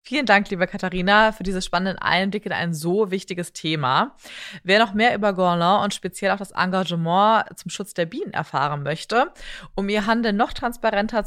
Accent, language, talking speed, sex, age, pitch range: German, German, 180 wpm, female, 20-39, 175-215 Hz